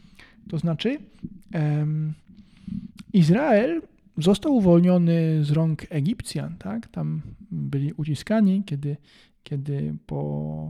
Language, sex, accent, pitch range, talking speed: Polish, male, native, 145-200 Hz, 90 wpm